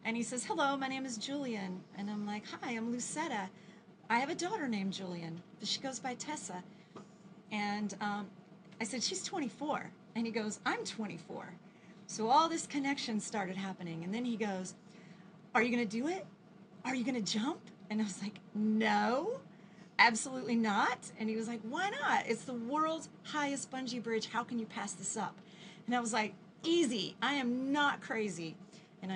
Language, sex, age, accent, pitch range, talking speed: English, female, 40-59, American, 195-245 Hz, 185 wpm